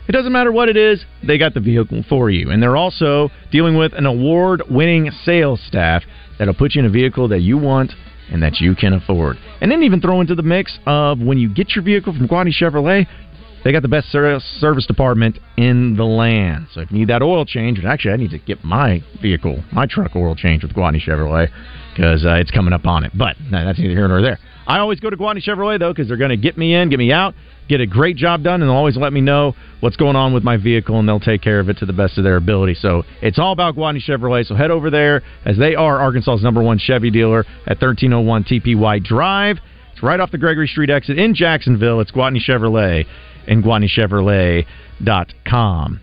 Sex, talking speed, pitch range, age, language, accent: male, 230 wpm, 100-150 Hz, 40-59, English, American